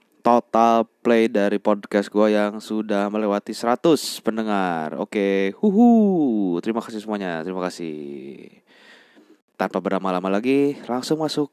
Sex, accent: male, native